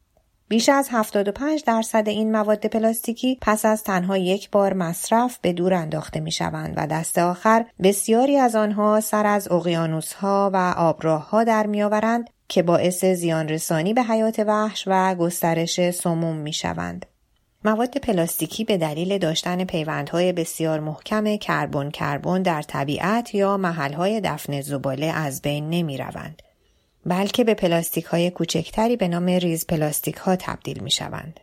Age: 30-49